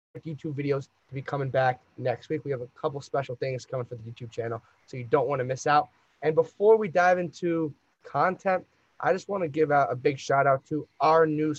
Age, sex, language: 20-39, male, English